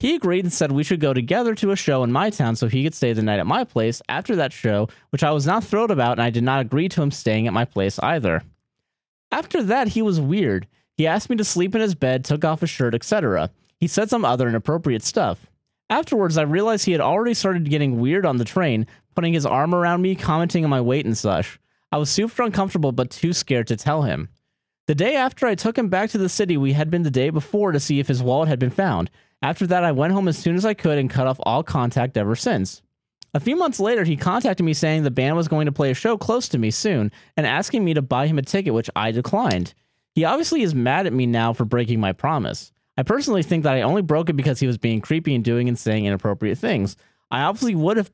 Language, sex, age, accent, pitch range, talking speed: English, male, 30-49, American, 120-185 Hz, 260 wpm